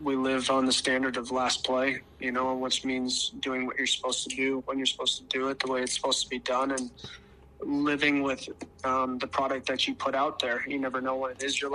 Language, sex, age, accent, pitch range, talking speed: English, male, 20-39, American, 125-135 Hz, 250 wpm